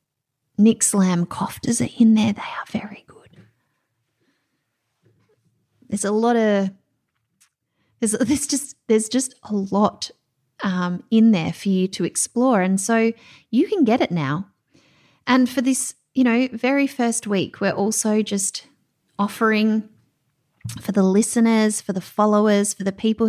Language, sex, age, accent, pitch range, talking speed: English, female, 30-49, Australian, 190-260 Hz, 145 wpm